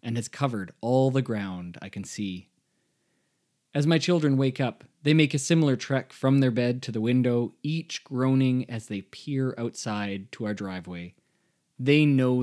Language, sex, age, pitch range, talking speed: English, male, 20-39, 110-135 Hz, 175 wpm